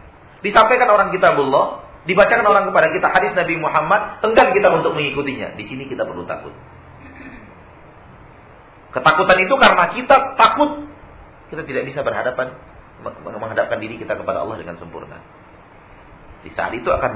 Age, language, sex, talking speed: 40-59, Malay, male, 135 wpm